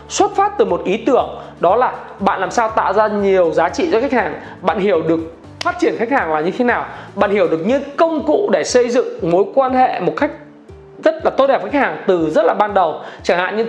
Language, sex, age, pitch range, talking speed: Vietnamese, male, 20-39, 220-290 Hz, 260 wpm